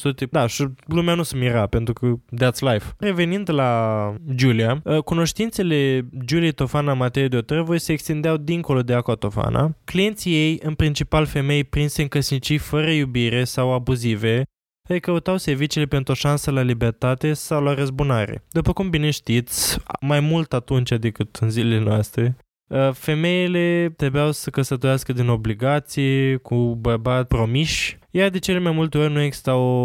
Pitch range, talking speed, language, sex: 120-145 Hz, 155 wpm, Romanian, male